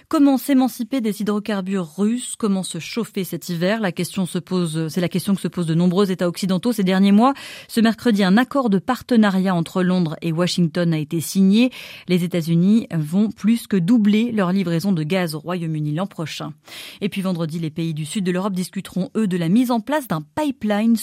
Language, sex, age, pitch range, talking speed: French, female, 30-49, 180-240 Hz, 205 wpm